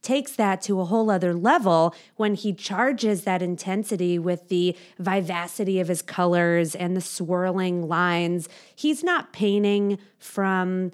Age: 30-49